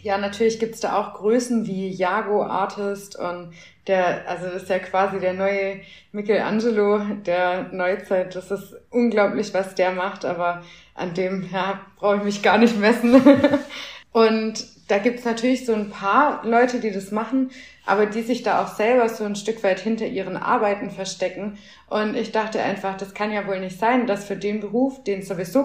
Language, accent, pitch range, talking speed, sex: German, German, 195-225 Hz, 190 wpm, female